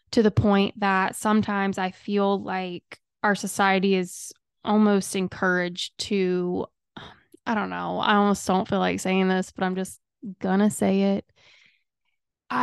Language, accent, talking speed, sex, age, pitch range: English, American, 145 wpm, female, 20-39, 185-205 Hz